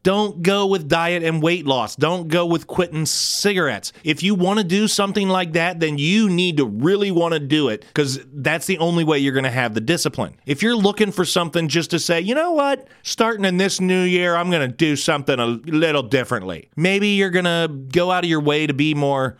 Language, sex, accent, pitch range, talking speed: English, male, American, 140-190 Hz, 235 wpm